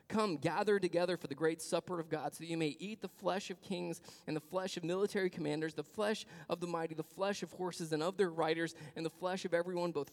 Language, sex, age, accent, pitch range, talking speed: English, male, 20-39, American, 145-180 Hz, 255 wpm